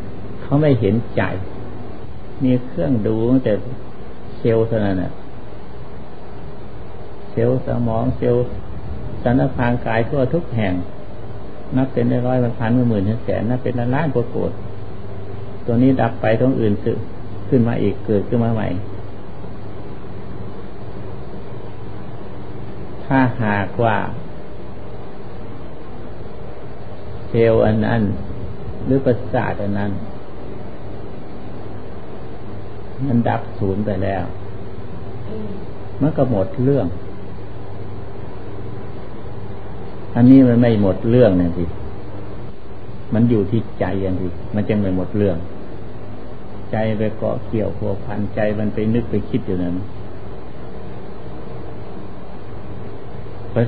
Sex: male